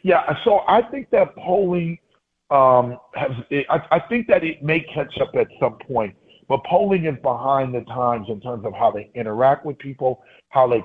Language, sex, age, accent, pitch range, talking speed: English, male, 40-59, American, 115-140 Hz, 200 wpm